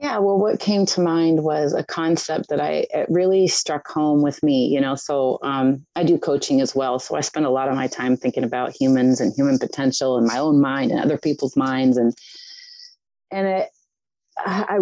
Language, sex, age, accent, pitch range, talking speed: English, female, 30-49, American, 135-180 Hz, 210 wpm